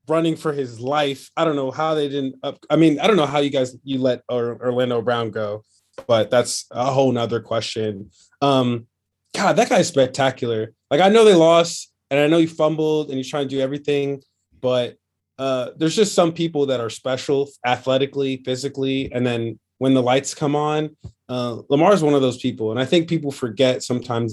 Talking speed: 205 wpm